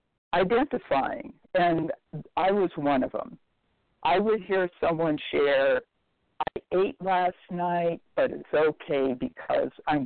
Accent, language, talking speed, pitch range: American, English, 125 wpm, 160-245 Hz